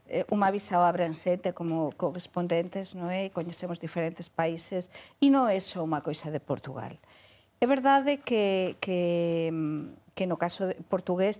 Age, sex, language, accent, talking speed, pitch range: 50-69, female, Portuguese, Spanish, 145 wpm, 165-215 Hz